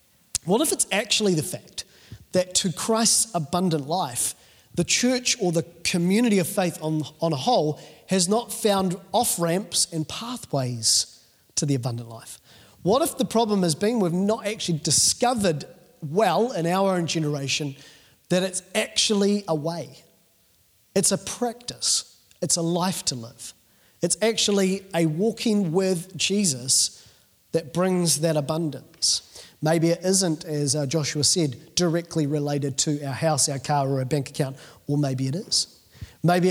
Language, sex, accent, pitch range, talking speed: English, male, Australian, 150-195 Hz, 155 wpm